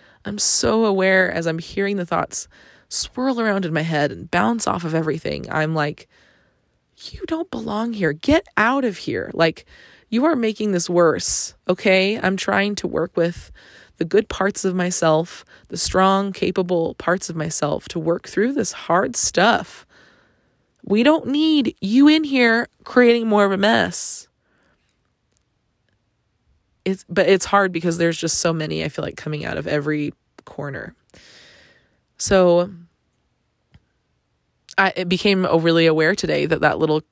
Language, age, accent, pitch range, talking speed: English, 20-39, American, 160-205 Hz, 155 wpm